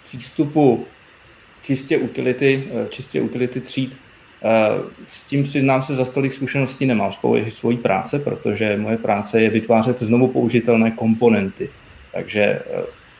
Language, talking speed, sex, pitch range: Czech, 120 wpm, male, 115-130 Hz